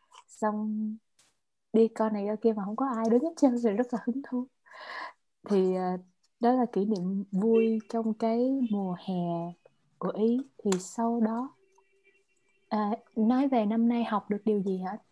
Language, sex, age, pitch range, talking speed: Vietnamese, female, 20-39, 200-245 Hz, 170 wpm